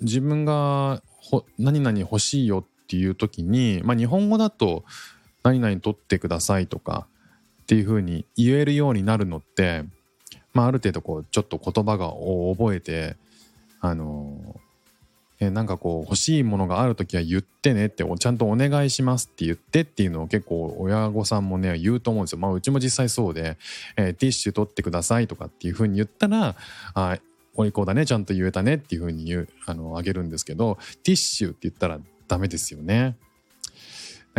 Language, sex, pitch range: Japanese, male, 90-130 Hz